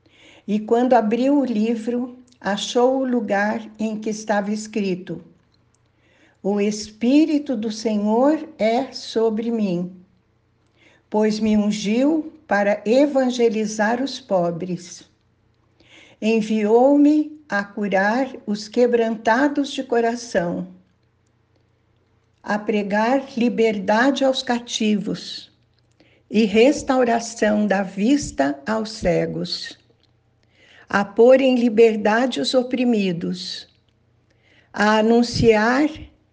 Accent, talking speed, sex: Brazilian, 85 wpm, female